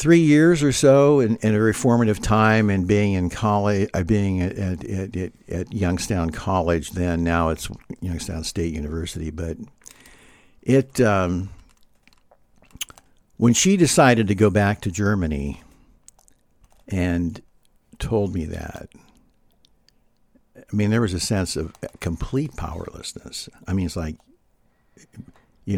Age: 60-79